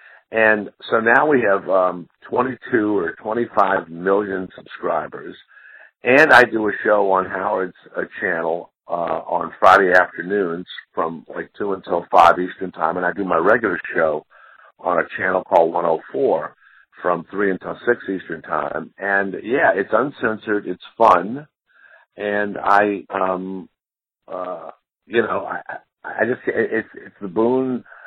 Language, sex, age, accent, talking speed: English, male, 50-69, American, 150 wpm